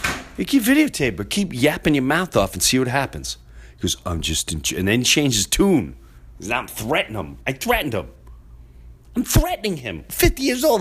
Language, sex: English, male